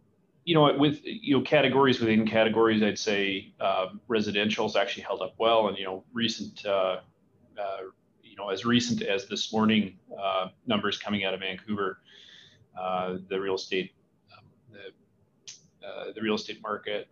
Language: English